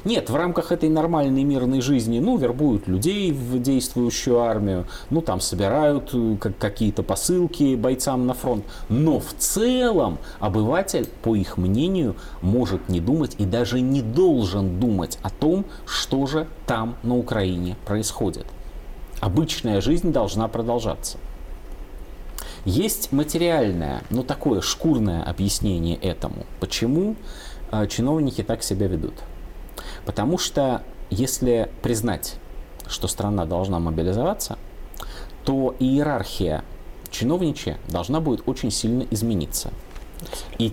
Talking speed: 115 wpm